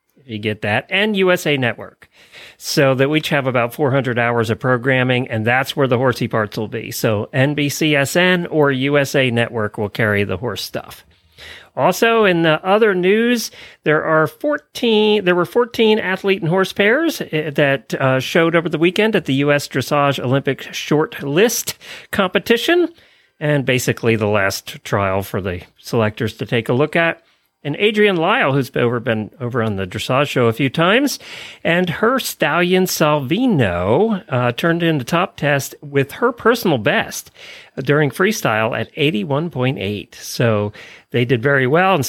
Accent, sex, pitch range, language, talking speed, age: American, male, 125-180 Hz, English, 165 wpm, 40-59